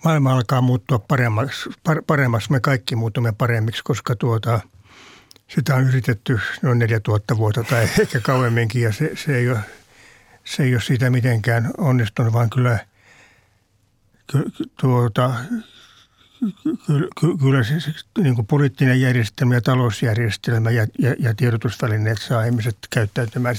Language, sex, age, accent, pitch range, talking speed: Finnish, male, 60-79, native, 115-140 Hz, 130 wpm